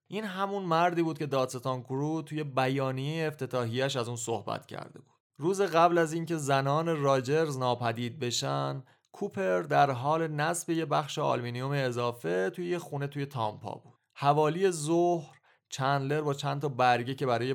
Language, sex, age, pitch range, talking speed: English, male, 30-49, 125-160 Hz, 155 wpm